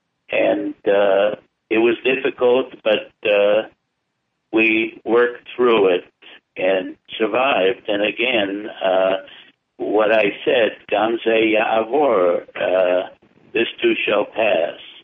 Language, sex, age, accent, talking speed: English, male, 60-79, American, 95 wpm